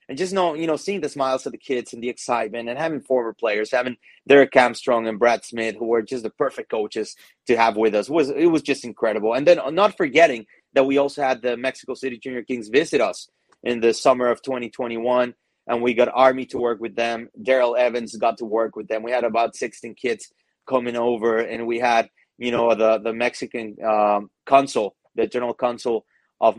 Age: 30-49